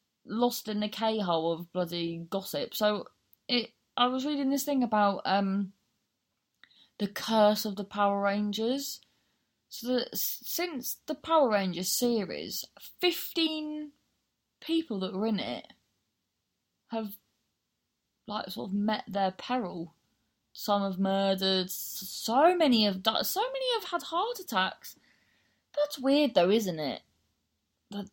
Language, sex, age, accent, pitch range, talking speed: English, female, 20-39, British, 180-250 Hz, 130 wpm